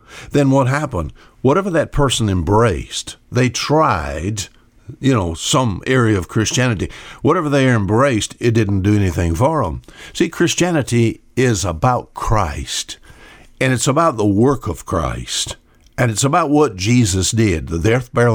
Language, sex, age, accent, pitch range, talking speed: English, male, 60-79, American, 100-130 Hz, 145 wpm